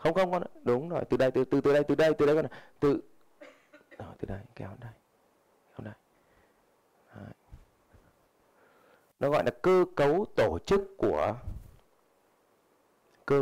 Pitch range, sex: 125-175 Hz, male